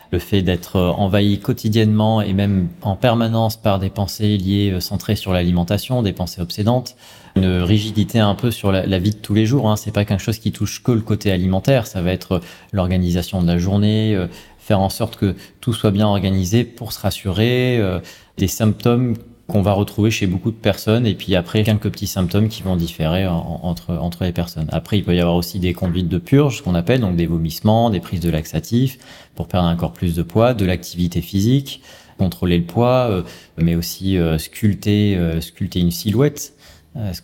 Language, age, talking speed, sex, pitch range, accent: French, 30-49, 200 wpm, male, 90-110 Hz, French